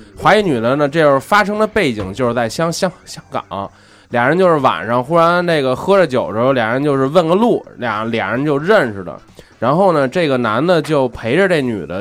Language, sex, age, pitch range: Chinese, male, 20-39, 110-170 Hz